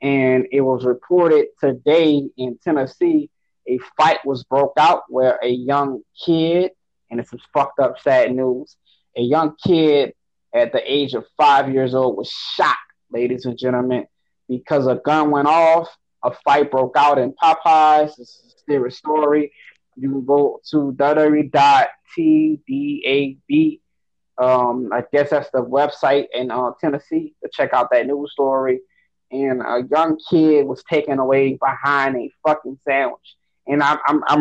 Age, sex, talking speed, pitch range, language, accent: 20-39, male, 155 wpm, 135-185 Hz, English, American